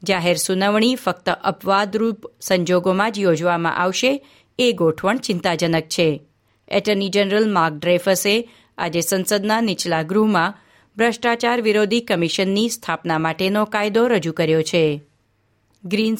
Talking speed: 110 wpm